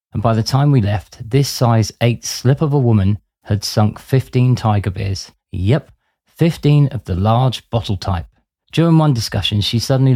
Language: English